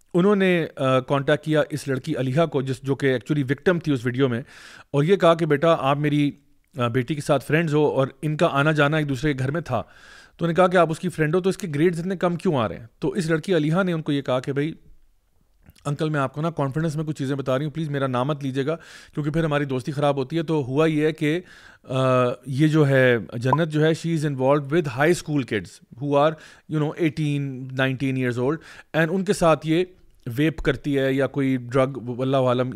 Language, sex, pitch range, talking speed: Urdu, male, 135-170 Hz, 250 wpm